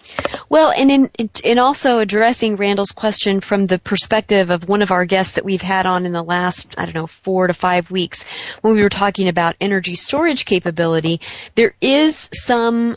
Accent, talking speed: American, 180 wpm